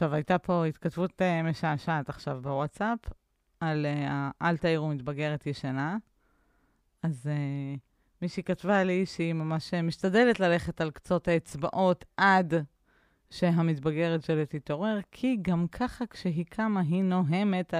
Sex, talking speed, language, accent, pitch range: female, 120 wpm, Hebrew, native, 145-180 Hz